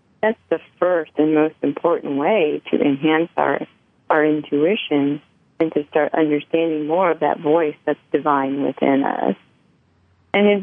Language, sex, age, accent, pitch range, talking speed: English, female, 40-59, American, 150-170 Hz, 140 wpm